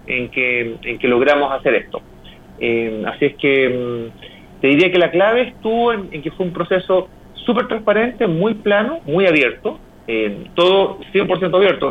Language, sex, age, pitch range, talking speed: Spanish, male, 40-59, 125-185 Hz, 165 wpm